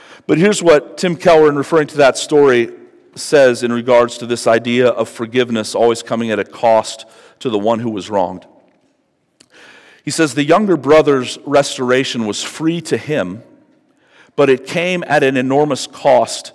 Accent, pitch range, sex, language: American, 125-165 Hz, male, English